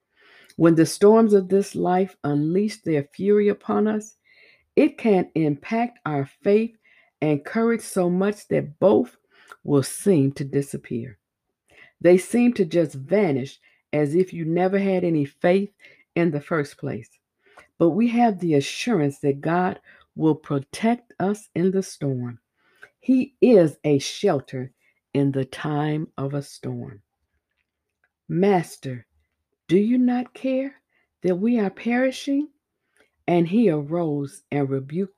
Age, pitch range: 60-79, 135-200 Hz